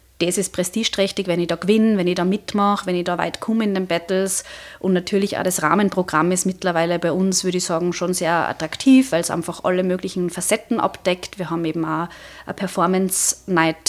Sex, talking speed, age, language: female, 205 wpm, 20-39, German